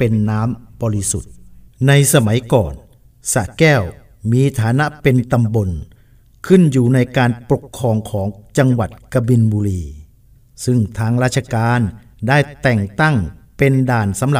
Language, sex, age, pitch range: Thai, male, 60-79, 110-140 Hz